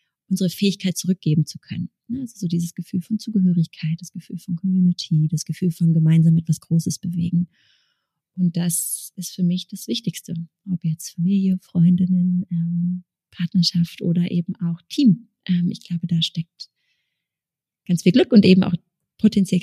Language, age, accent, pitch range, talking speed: German, 30-49, German, 170-190 Hz, 155 wpm